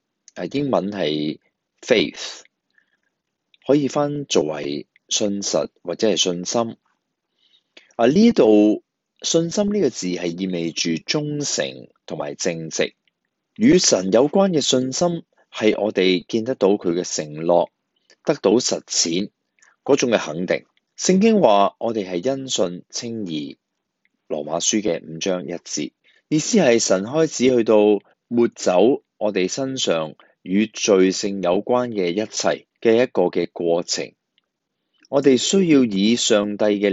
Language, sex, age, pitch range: Chinese, male, 30-49, 90-130 Hz